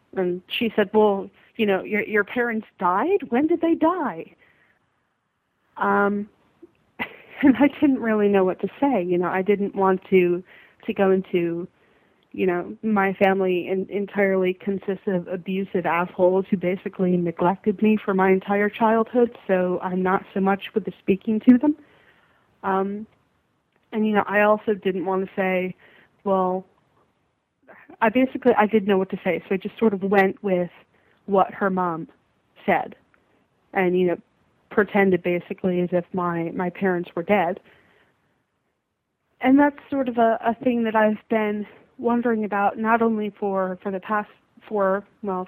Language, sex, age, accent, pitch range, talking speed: English, female, 30-49, American, 185-220 Hz, 160 wpm